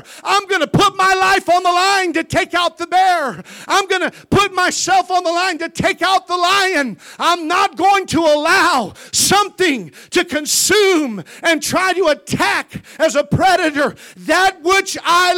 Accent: American